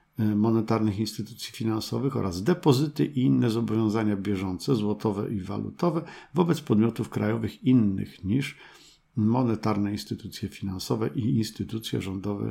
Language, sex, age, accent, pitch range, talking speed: Polish, male, 50-69, native, 105-135 Hz, 110 wpm